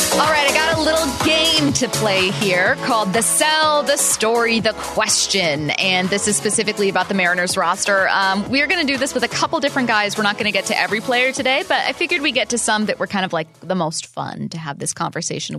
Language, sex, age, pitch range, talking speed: English, female, 20-39, 165-230 Hz, 250 wpm